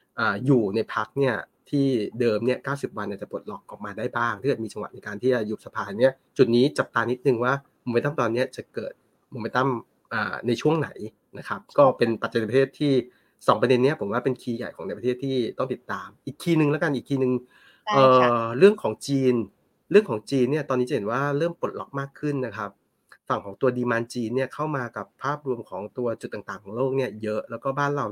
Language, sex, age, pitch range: Thai, male, 30-49, 115-135 Hz